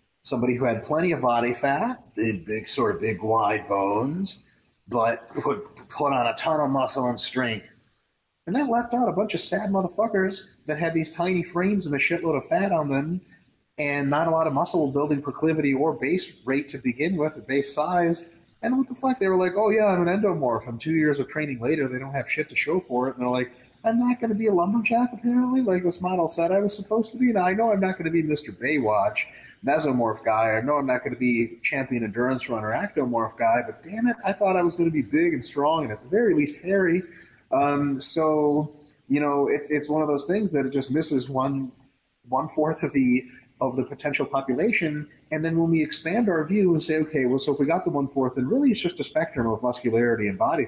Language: English